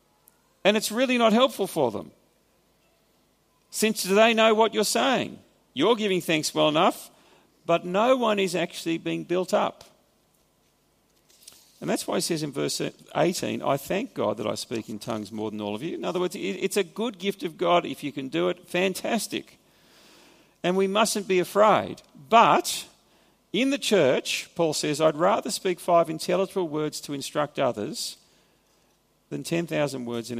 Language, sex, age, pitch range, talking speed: English, male, 40-59, 155-205 Hz, 170 wpm